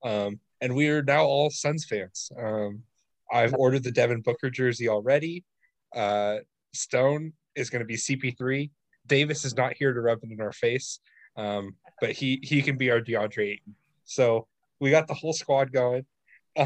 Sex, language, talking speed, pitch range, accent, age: male, English, 175 wpm, 110-140 Hz, American, 20-39